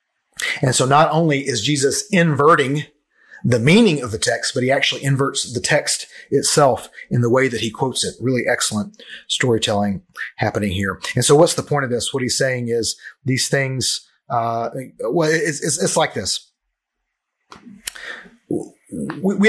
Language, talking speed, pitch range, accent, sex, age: English, 155 wpm, 115-145 Hz, American, male, 40-59